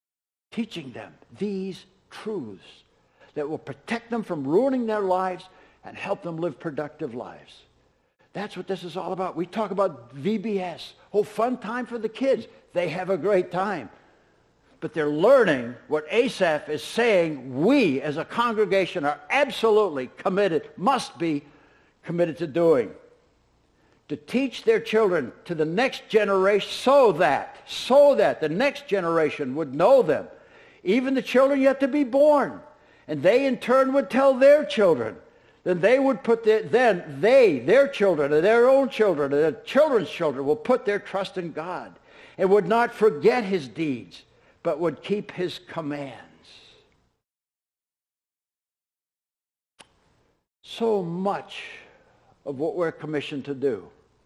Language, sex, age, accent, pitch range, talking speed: English, male, 60-79, American, 165-245 Hz, 150 wpm